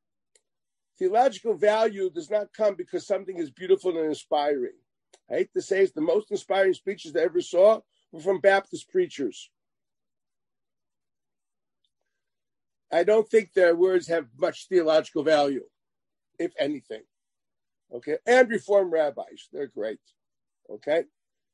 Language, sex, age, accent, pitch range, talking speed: English, male, 50-69, American, 170-255 Hz, 130 wpm